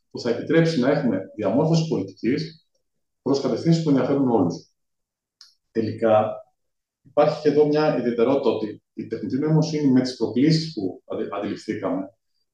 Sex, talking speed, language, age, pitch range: male, 130 wpm, Greek, 30-49, 115-150 Hz